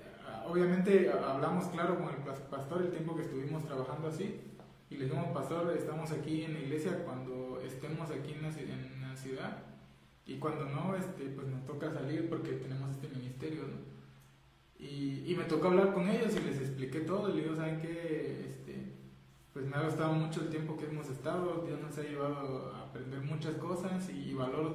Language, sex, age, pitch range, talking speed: Spanish, male, 20-39, 135-165 Hz, 190 wpm